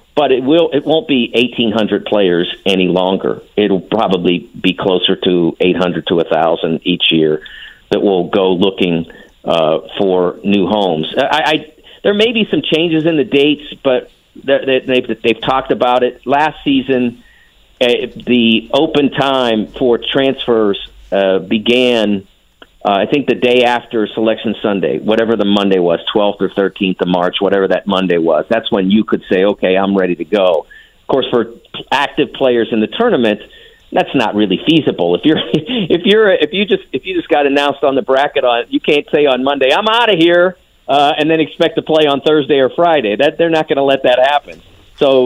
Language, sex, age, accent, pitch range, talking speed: English, male, 50-69, American, 100-145 Hz, 190 wpm